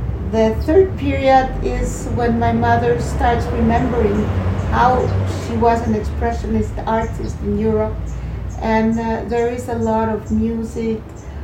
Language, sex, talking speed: English, female, 130 wpm